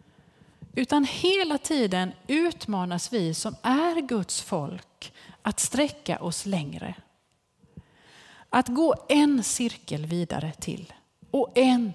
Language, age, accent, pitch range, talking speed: Swedish, 30-49, native, 175-275 Hz, 105 wpm